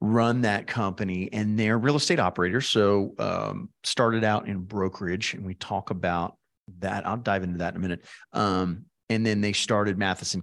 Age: 40-59